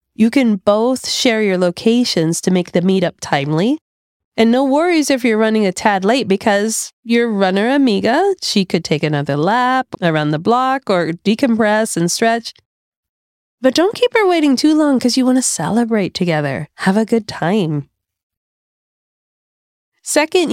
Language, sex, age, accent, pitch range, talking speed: English, female, 30-49, American, 170-250 Hz, 160 wpm